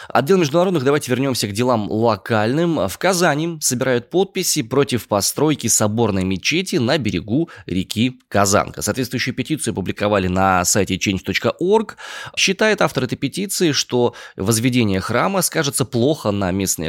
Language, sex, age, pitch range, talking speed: Russian, male, 20-39, 95-135 Hz, 130 wpm